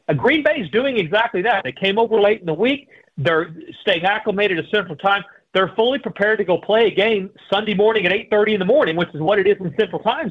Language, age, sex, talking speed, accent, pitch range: English, 40-59, male, 245 wpm, American, 160-210 Hz